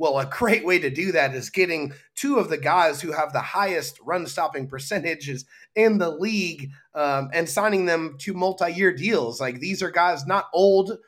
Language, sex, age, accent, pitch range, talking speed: English, male, 30-49, American, 140-185 Hz, 195 wpm